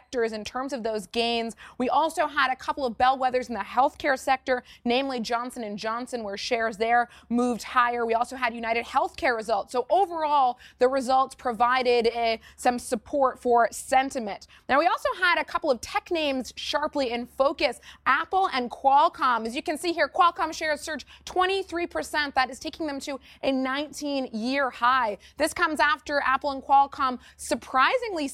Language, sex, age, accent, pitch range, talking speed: English, female, 20-39, American, 240-295 Hz, 170 wpm